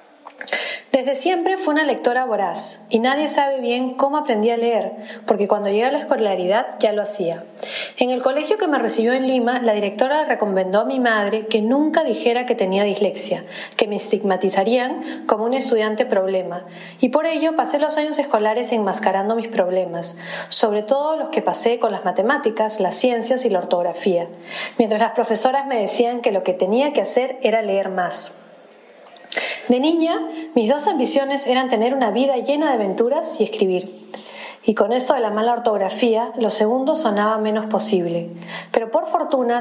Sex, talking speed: female, 175 wpm